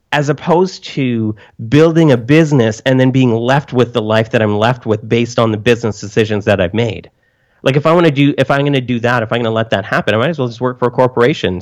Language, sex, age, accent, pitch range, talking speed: English, male, 30-49, American, 100-135 Hz, 275 wpm